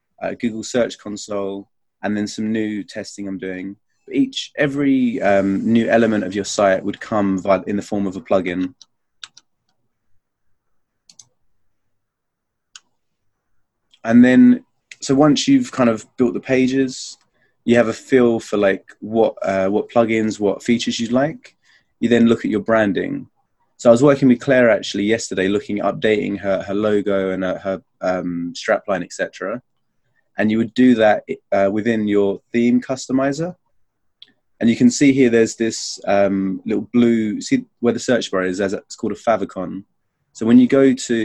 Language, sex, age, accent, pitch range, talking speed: English, male, 20-39, British, 100-125 Hz, 165 wpm